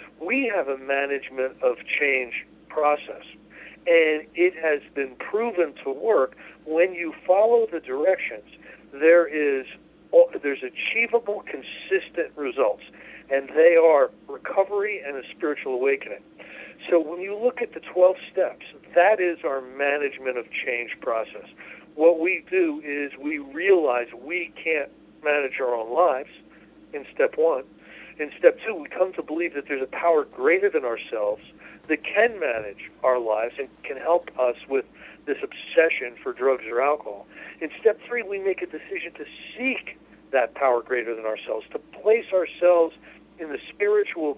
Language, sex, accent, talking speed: English, male, American, 150 wpm